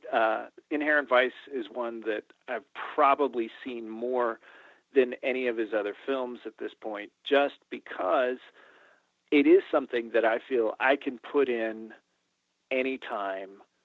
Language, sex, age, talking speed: English, male, 40-59, 145 wpm